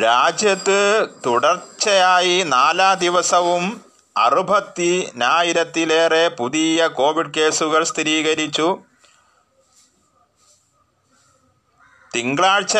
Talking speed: 45 wpm